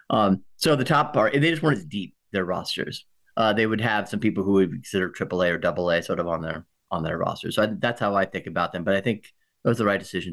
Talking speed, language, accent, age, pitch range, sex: 285 wpm, English, American, 30-49, 95-120 Hz, male